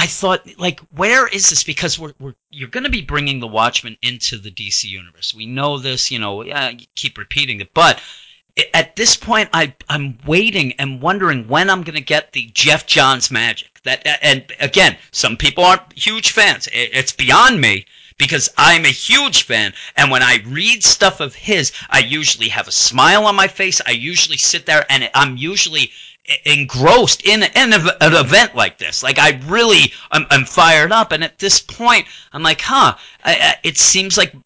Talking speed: 195 wpm